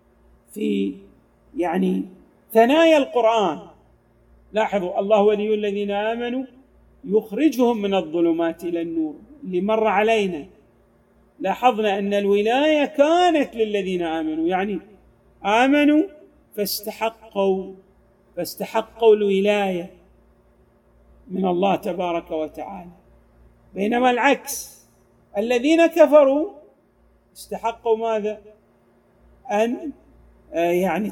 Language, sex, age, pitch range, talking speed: Arabic, male, 40-59, 195-265 Hz, 75 wpm